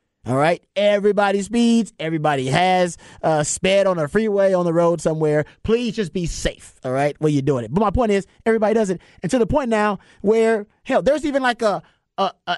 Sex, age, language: male, 30-49, English